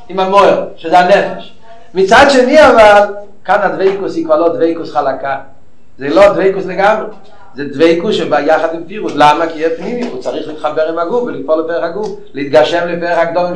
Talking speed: 170 wpm